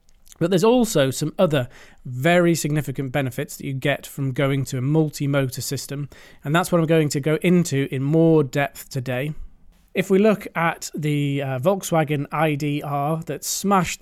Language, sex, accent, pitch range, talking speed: English, male, British, 145-170 Hz, 165 wpm